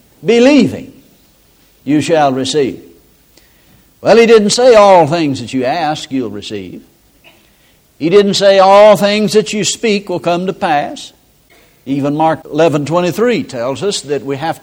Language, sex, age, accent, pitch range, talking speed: English, male, 60-79, American, 145-195 Hz, 150 wpm